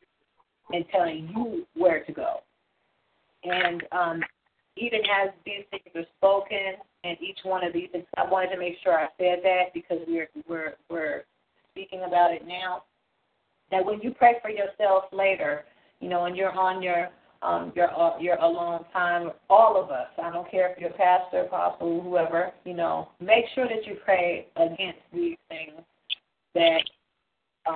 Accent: American